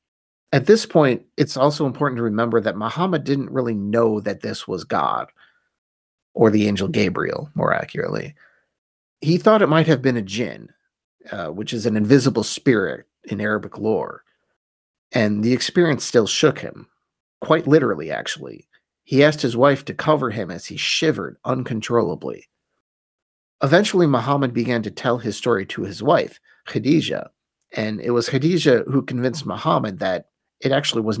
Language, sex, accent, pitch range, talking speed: English, male, American, 115-150 Hz, 160 wpm